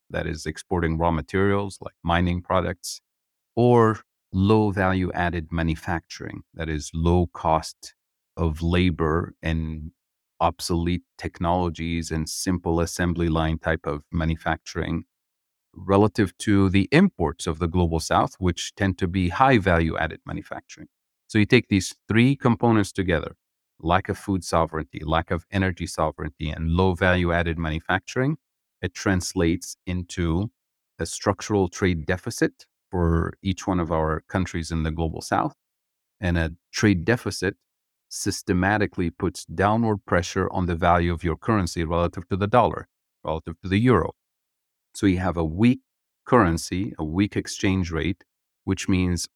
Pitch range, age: 85-100 Hz, 40-59